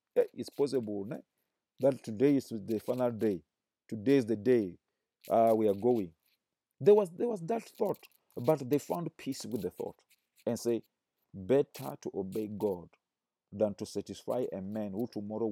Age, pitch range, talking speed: 40-59, 105-125 Hz, 160 wpm